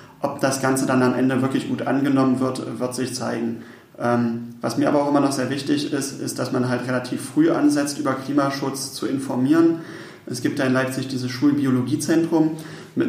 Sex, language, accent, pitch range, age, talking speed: male, German, German, 125-140 Hz, 30-49, 190 wpm